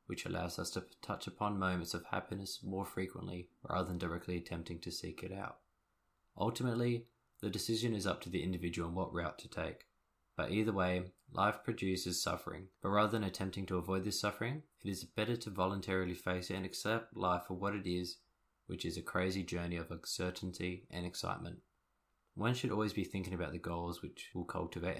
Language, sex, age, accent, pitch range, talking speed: English, male, 20-39, Australian, 90-100 Hz, 190 wpm